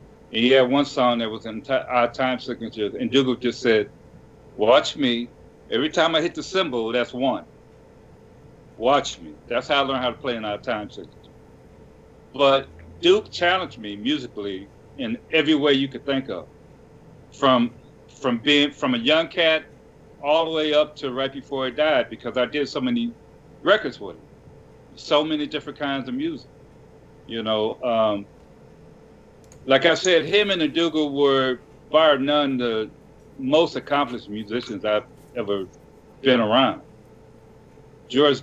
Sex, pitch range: male, 120-160 Hz